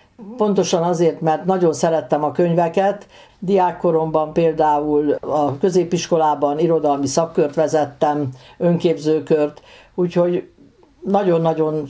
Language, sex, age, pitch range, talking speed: Hungarian, female, 60-79, 150-180 Hz, 85 wpm